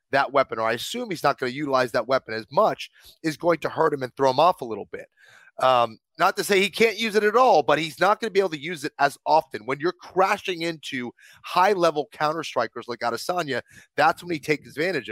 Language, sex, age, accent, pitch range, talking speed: English, male, 30-49, American, 130-170 Hz, 240 wpm